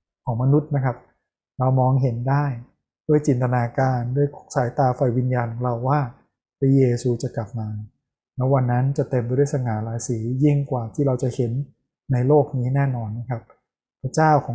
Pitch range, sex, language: 125-145 Hz, male, Thai